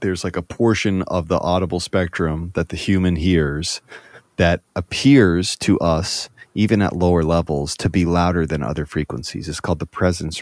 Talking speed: 175 wpm